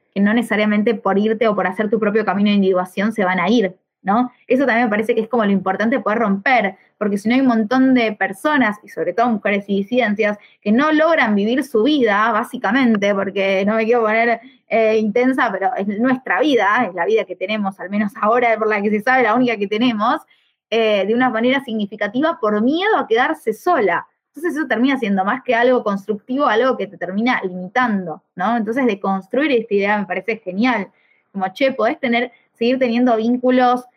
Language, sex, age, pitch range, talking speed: Spanish, female, 20-39, 205-250 Hz, 205 wpm